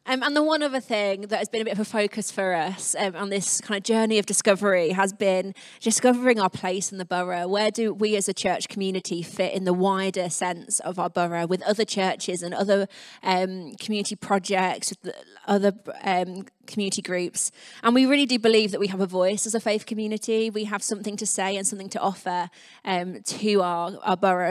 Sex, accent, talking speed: female, British, 215 wpm